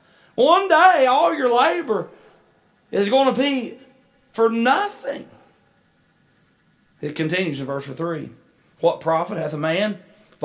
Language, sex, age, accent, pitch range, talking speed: English, male, 40-59, American, 140-185 Hz, 125 wpm